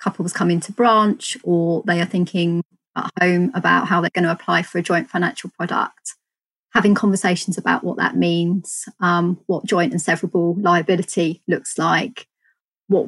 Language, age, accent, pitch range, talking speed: English, 30-49, British, 180-210 Hz, 165 wpm